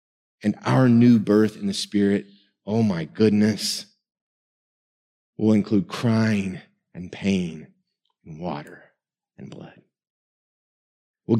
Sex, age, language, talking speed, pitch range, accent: male, 30-49, English, 105 wpm, 90-120 Hz, American